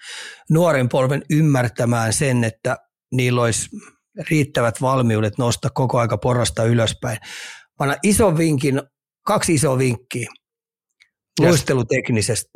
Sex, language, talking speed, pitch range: male, Finnish, 100 wpm, 115-140 Hz